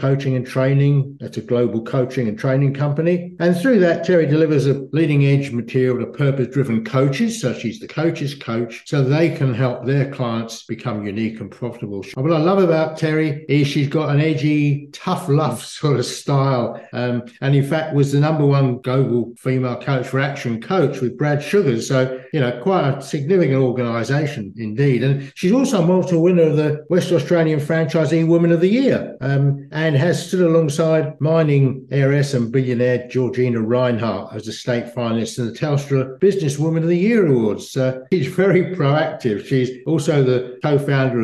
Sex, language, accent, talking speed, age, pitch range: male, English, British, 180 wpm, 60-79, 120-155 Hz